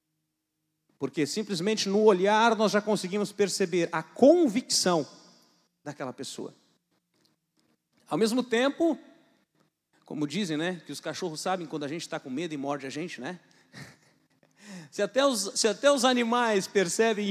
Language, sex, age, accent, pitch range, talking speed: Portuguese, male, 40-59, Brazilian, 160-215 Hz, 140 wpm